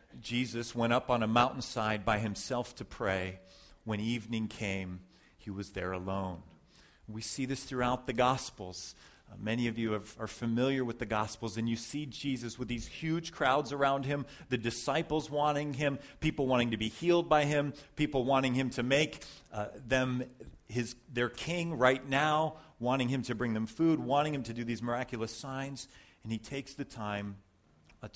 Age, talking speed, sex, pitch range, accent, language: 40-59, 180 wpm, male, 100-120 Hz, American, English